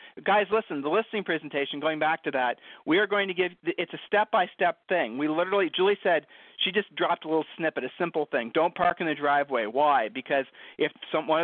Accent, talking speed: American, 215 wpm